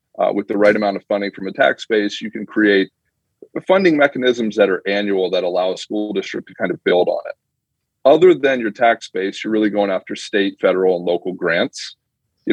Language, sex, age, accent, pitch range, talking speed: English, male, 30-49, American, 100-115 Hz, 215 wpm